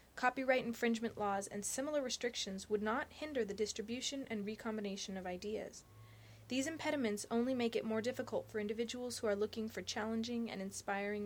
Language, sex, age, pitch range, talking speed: English, female, 20-39, 200-245 Hz, 165 wpm